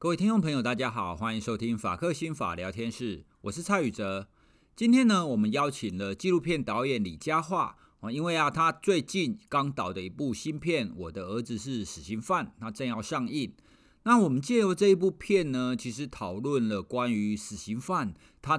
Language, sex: Chinese, male